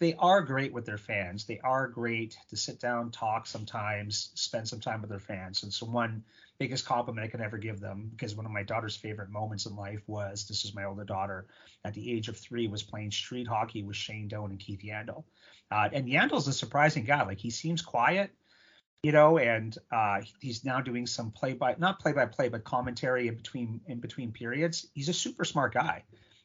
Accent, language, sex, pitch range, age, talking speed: American, English, male, 105-130 Hz, 30-49, 220 wpm